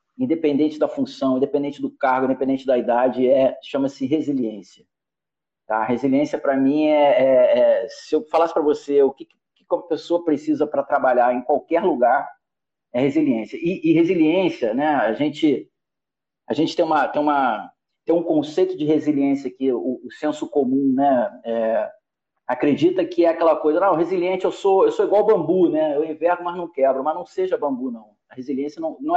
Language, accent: Portuguese, Brazilian